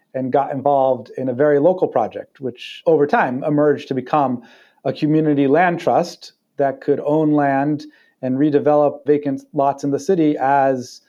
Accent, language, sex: American, English, male